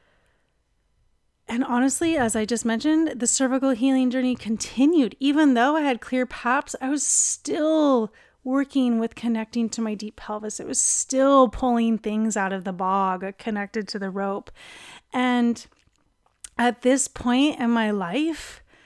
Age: 30-49